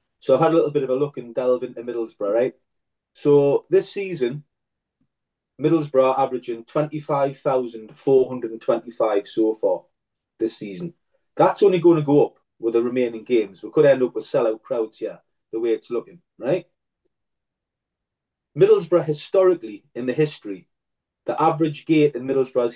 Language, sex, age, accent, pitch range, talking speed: English, male, 30-49, British, 125-180 Hz, 155 wpm